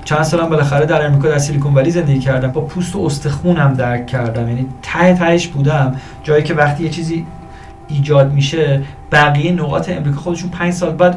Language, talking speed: Persian, 195 wpm